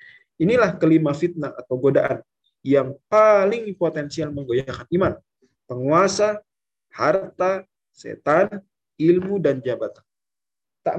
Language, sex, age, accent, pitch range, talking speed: Indonesian, male, 20-39, native, 140-190 Hz, 95 wpm